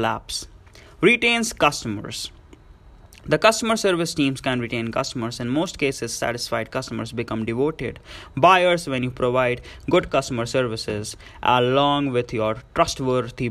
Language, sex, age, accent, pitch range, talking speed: English, male, 20-39, Indian, 115-140 Hz, 125 wpm